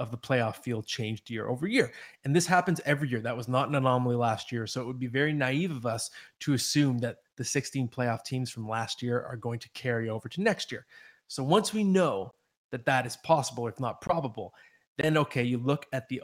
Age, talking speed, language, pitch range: 20-39, 235 wpm, English, 120-145 Hz